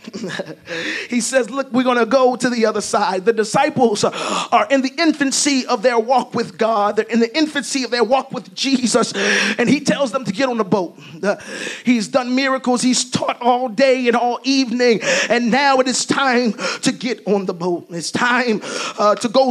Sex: male